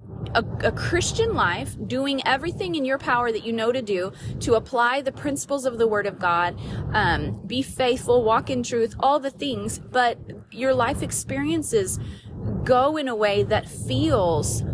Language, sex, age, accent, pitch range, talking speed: English, female, 30-49, American, 175-265 Hz, 170 wpm